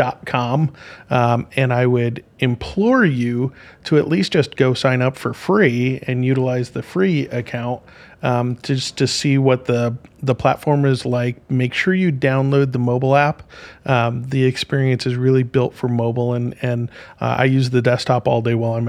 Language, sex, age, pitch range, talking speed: English, male, 40-59, 125-145 Hz, 185 wpm